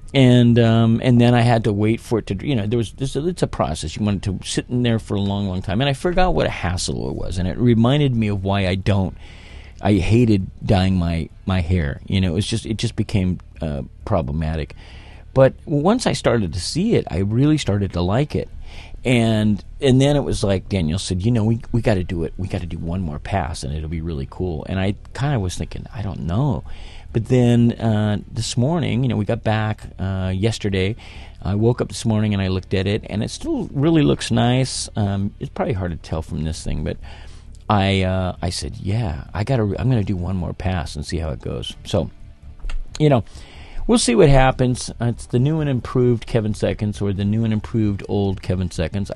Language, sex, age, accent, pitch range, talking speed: English, male, 40-59, American, 90-120 Hz, 235 wpm